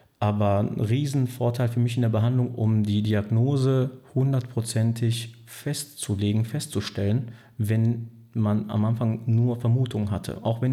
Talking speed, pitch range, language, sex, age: 130 wpm, 105-120 Hz, German, male, 40-59